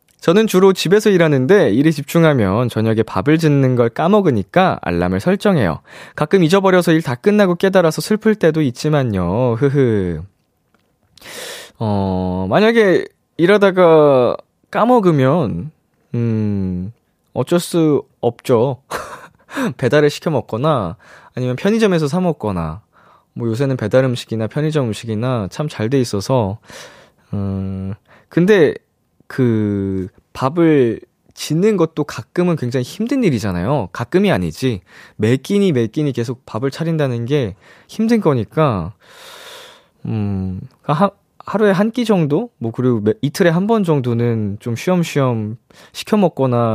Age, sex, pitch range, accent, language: 20-39, male, 110-185 Hz, native, Korean